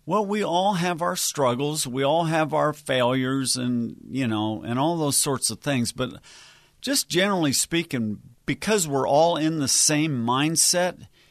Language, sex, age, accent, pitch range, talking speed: English, male, 50-69, American, 125-155 Hz, 165 wpm